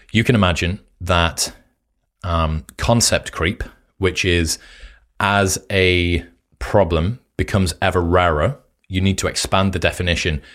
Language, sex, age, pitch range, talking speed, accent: English, male, 30-49, 80-100 Hz, 120 wpm, British